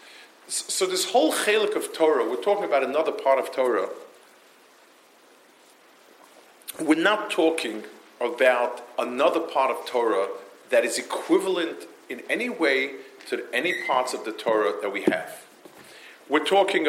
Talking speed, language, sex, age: 135 wpm, English, male, 40-59